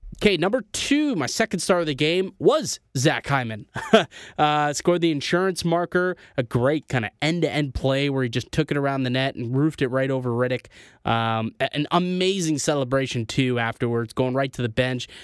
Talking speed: 190 wpm